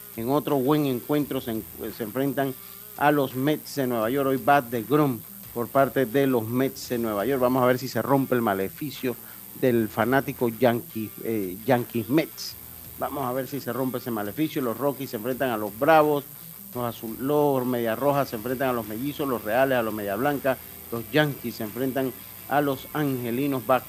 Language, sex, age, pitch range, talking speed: Spanish, male, 50-69, 115-140 Hz, 195 wpm